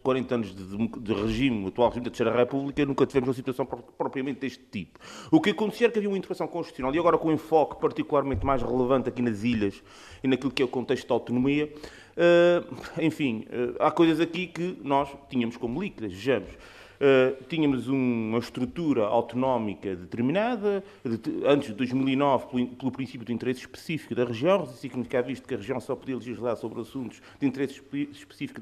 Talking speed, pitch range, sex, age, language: 175 wpm, 110-150 Hz, male, 30-49, Portuguese